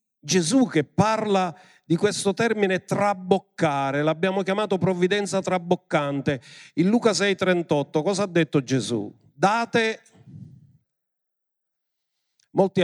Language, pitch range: Italian, 135-175 Hz